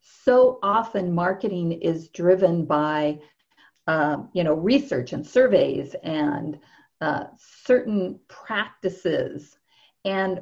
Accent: American